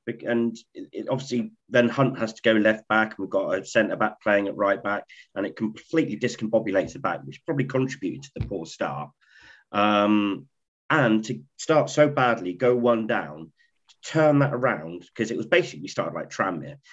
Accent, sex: British, male